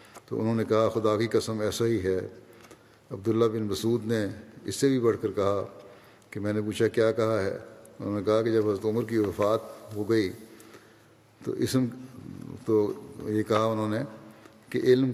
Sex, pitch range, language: male, 110-120 Hz, Urdu